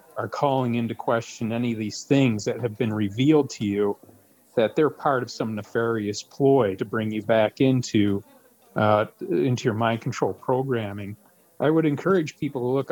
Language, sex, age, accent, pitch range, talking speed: English, male, 40-59, American, 110-130 Hz, 175 wpm